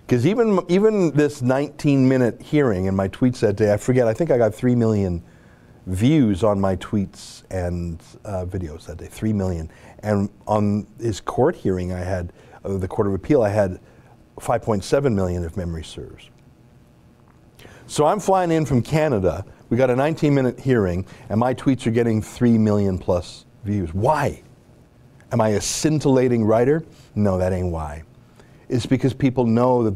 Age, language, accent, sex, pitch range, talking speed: 50-69, English, American, male, 100-125 Hz, 170 wpm